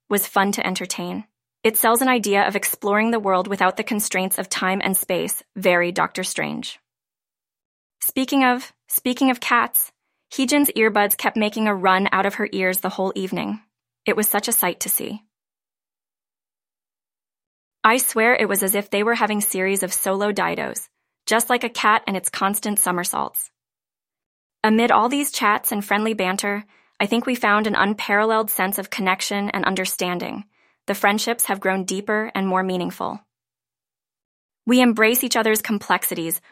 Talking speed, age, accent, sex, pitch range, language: 165 wpm, 20-39, American, female, 190-220 Hz, English